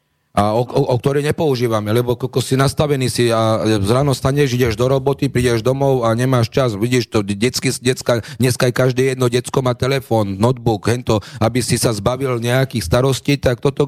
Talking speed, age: 185 wpm, 40-59